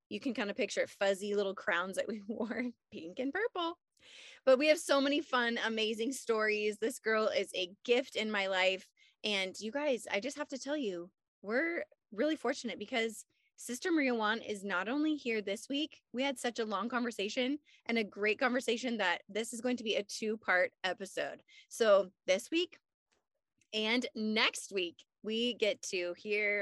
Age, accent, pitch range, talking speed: 20-39, American, 185-250 Hz, 185 wpm